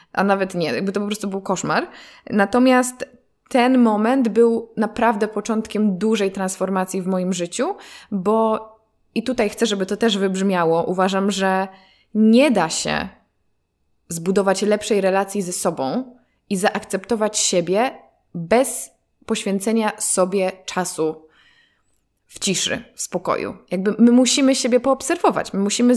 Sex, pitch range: female, 190-235 Hz